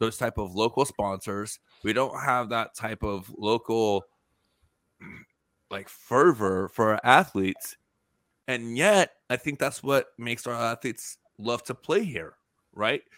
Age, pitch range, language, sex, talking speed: 30-49, 100-120 Hz, English, male, 140 wpm